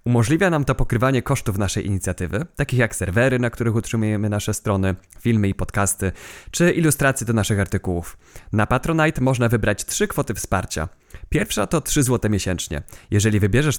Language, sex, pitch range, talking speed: Polish, male, 100-135 Hz, 160 wpm